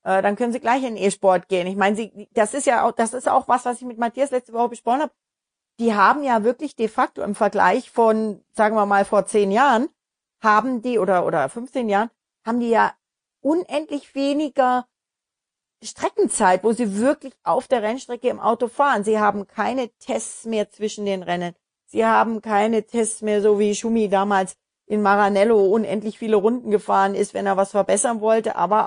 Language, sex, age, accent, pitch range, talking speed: German, female, 40-59, German, 200-250 Hz, 190 wpm